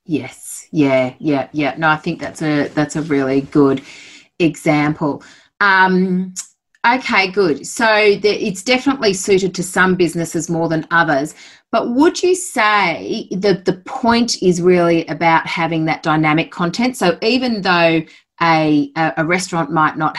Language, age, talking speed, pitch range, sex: English, 30-49, 150 wpm, 150-195 Hz, female